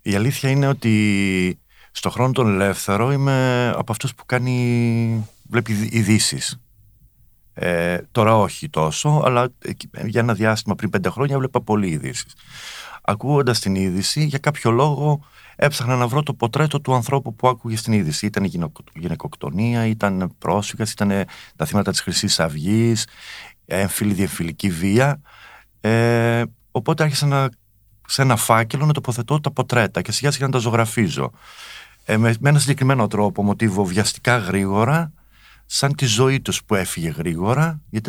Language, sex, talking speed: Greek, male, 140 wpm